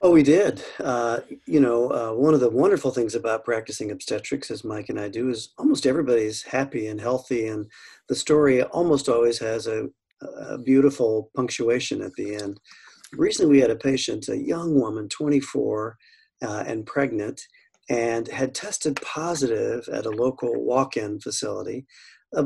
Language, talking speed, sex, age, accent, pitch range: English, 165 wpm, male, 40-59, American, 120-150 Hz